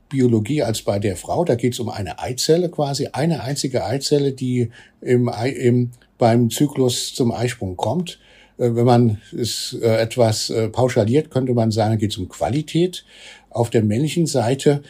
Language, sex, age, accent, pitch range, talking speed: German, male, 60-79, German, 110-130 Hz, 160 wpm